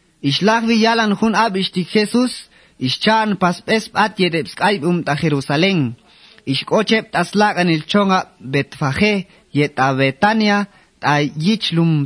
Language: English